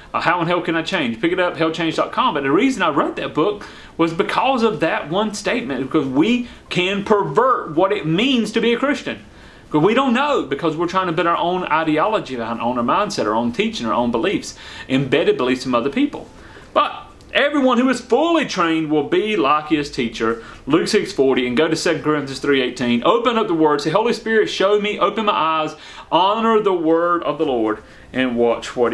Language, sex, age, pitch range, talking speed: English, male, 30-49, 150-215 Hz, 215 wpm